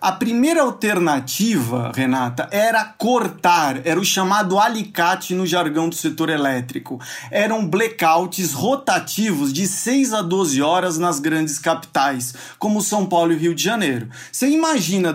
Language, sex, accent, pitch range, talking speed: Portuguese, male, Brazilian, 165-210 Hz, 140 wpm